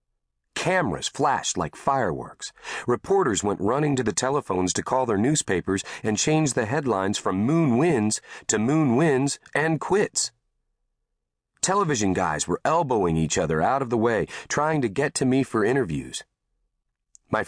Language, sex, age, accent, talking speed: English, male, 40-59, American, 150 wpm